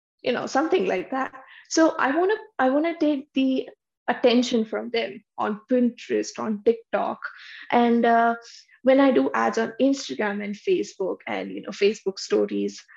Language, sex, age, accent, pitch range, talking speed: English, female, 20-39, Indian, 220-265 Hz, 155 wpm